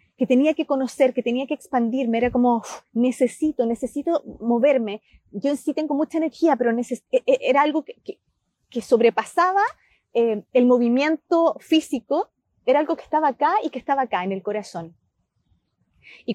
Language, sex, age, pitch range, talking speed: Spanish, female, 30-49, 220-295 Hz, 160 wpm